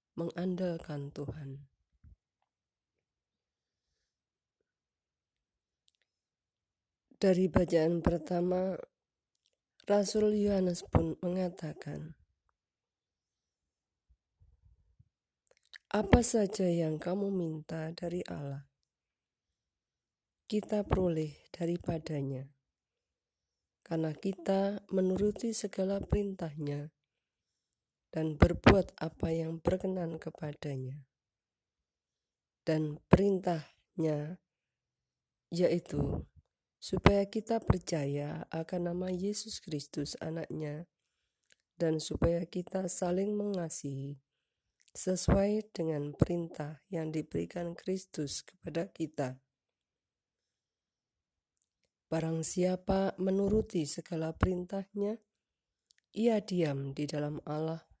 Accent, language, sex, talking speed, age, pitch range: native, Indonesian, female, 65 wpm, 20-39, 145-185 Hz